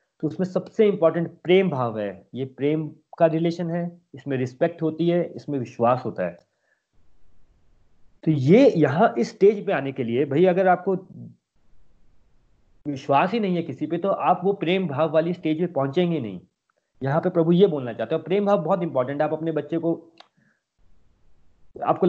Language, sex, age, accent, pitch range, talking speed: Hindi, male, 30-49, native, 135-175 Hz, 175 wpm